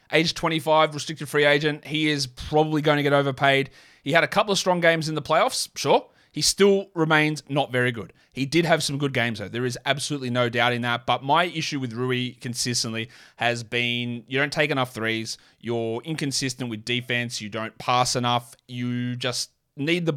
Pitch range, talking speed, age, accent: 120-150 Hz, 200 wpm, 20-39, Australian